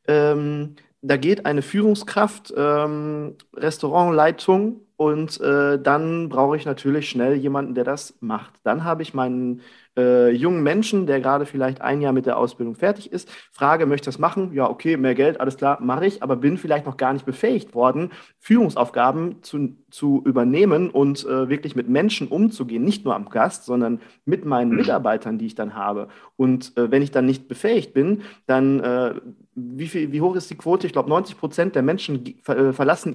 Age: 40-59